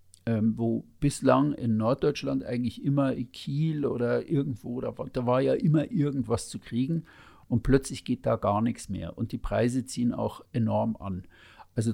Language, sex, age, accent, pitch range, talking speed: German, male, 50-69, German, 110-135 Hz, 160 wpm